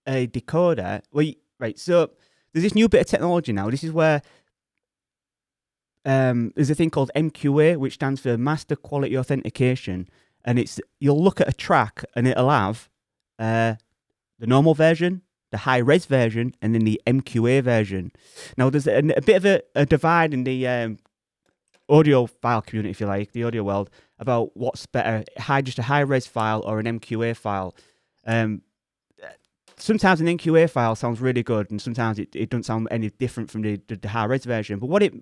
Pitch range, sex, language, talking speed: 115-150 Hz, male, English, 185 wpm